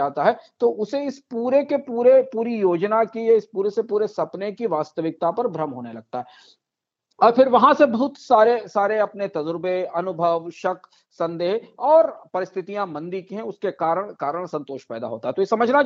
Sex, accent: male, native